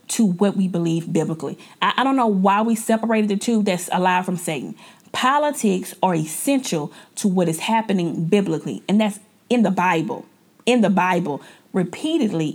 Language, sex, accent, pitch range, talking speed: English, female, American, 195-275 Hz, 165 wpm